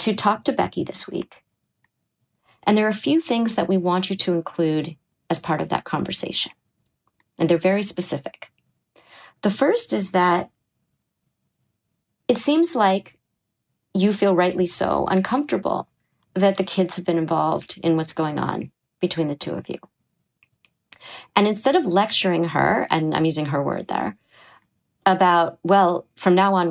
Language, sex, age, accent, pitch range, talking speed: English, female, 40-59, American, 170-205 Hz, 155 wpm